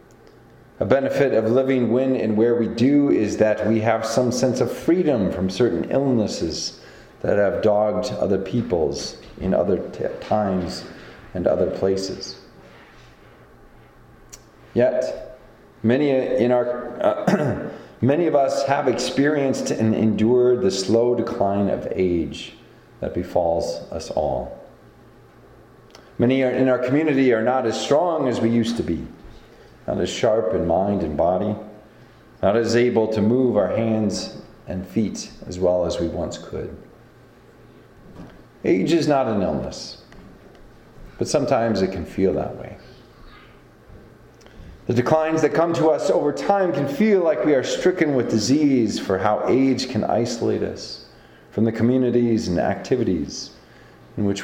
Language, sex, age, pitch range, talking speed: English, male, 40-59, 105-130 Hz, 140 wpm